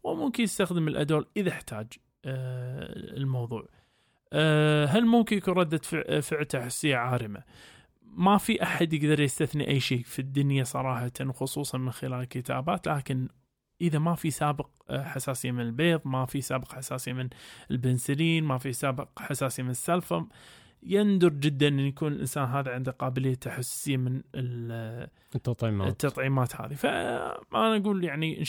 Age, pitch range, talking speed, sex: 20-39, 130-165 Hz, 130 wpm, male